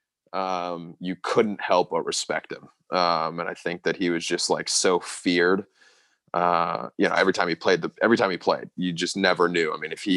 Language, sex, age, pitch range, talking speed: English, male, 30-49, 85-90 Hz, 225 wpm